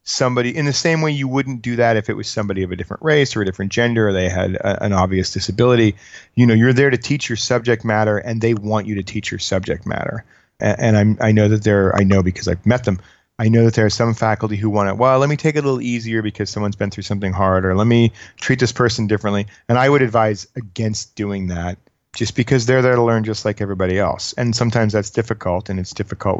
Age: 30-49